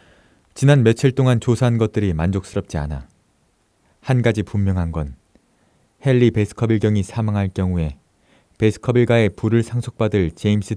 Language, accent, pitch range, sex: Korean, native, 90-120 Hz, male